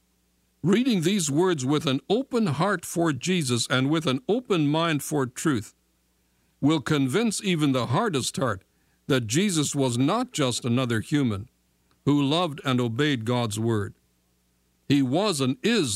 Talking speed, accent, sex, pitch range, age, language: 145 wpm, American, male, 100-150 Hz, 60-79, English